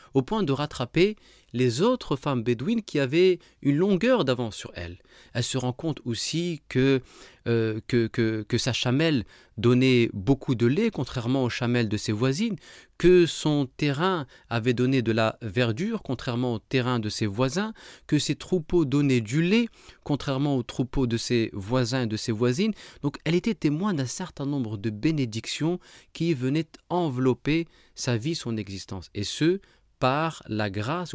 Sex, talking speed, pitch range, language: male, 170 wpm, 115-155 Hz, French